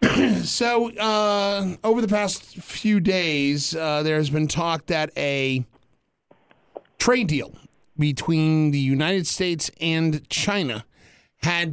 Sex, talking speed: male, 115 wpm